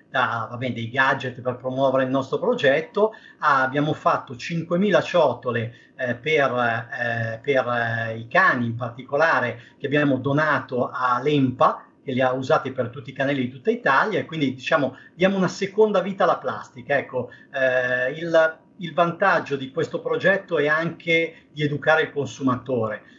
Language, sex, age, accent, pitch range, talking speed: Italian, male, 40-59, native, 130-165 Hz, 155 wpm